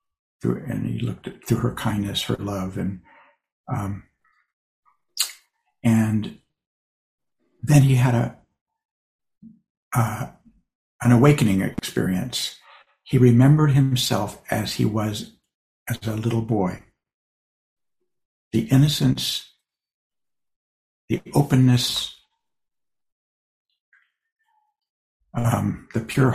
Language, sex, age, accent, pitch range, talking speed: English, male, 60-79, American, 100-170 Hz, 85 wpm